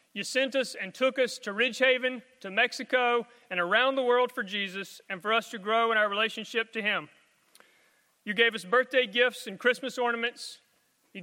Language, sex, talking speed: English, male, 185 wpm